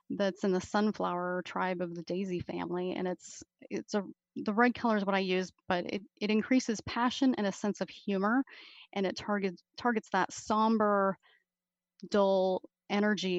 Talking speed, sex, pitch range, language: 170 wpm, female, 190-230 Hz, English